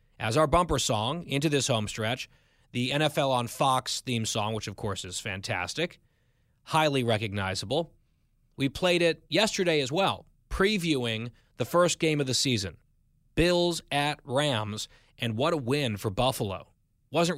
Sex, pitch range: male, 115-155 Hz